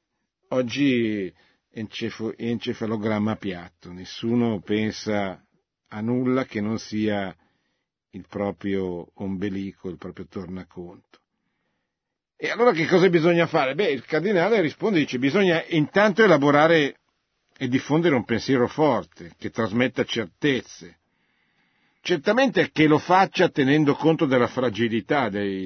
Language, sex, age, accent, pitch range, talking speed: Italian, male, 50-69, native, 100-145 Hz, 115 wpm